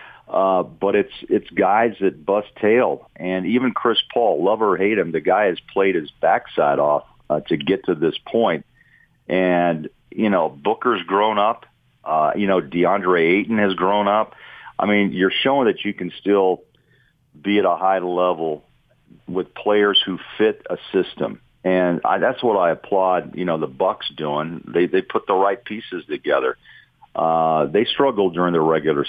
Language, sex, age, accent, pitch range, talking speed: English, male, 50-69, American, 85-105 Hz, 175 wpm